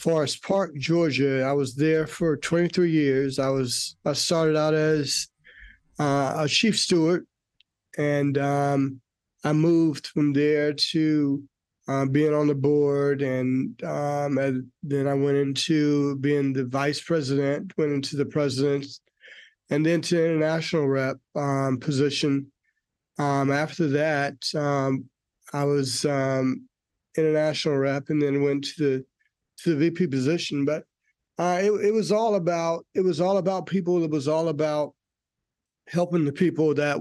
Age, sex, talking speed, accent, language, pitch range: 30-49, male, 145 wpm, American, English, 140-155 Hz